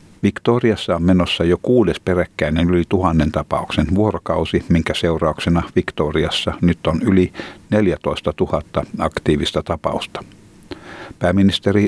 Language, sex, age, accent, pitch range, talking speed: Finnish, male, 60-79, native, 90-105 Hz, 105 wpm